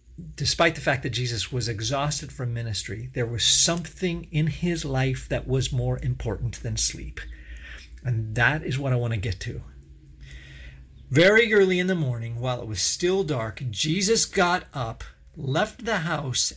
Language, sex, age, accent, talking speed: English, male, 40-59, American, 165 wpm